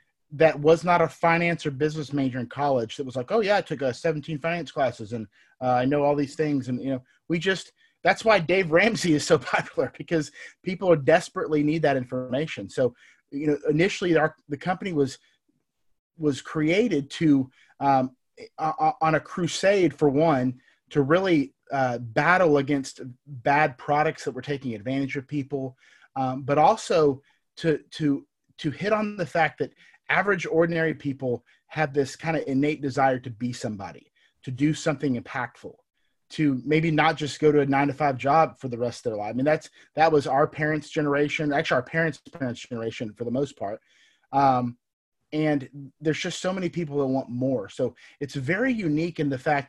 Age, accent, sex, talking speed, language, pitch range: 30-49, American, male, 190 wpm, English, 135-165 Hz